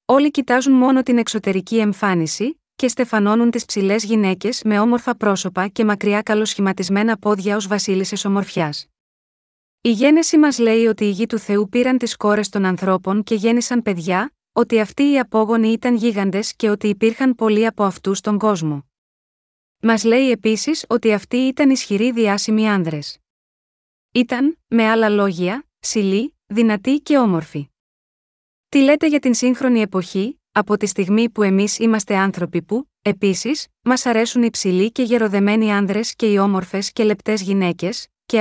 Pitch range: 205-245 Hz